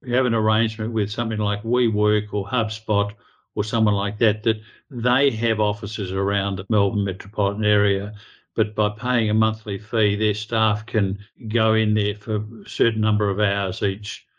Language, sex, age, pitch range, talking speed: English, male, 50-69, 105-115 Hz, 175 wpm